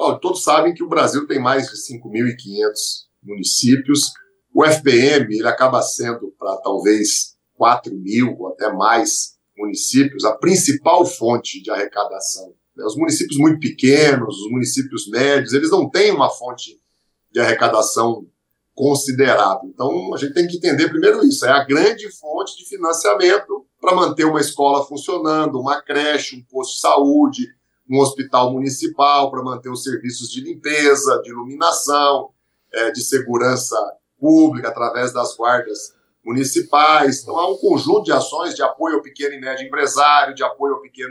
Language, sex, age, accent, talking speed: Portuguese, male, 50-69, Brazilian, 150 wpm